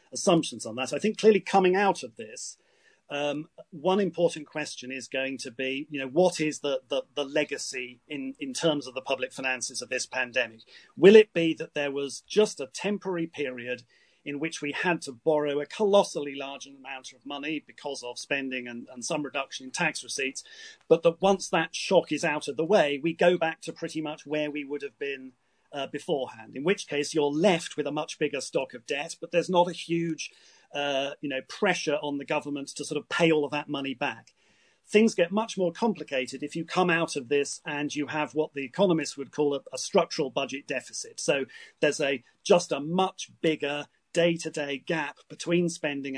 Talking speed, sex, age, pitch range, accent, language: 210 wpm, male, 40-59, 140-165 Hz, British, English